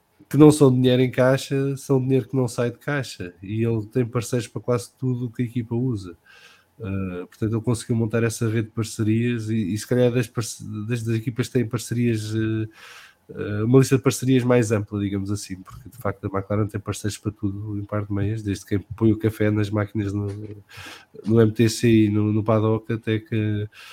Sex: male